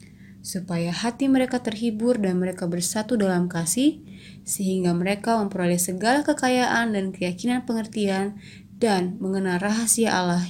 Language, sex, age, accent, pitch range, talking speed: Indonesian, female, 20-39, native, 185-235 Hz, 120 wpm